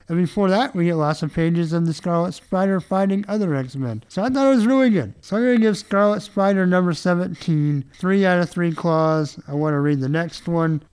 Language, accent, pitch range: English, American, 130-175 Hz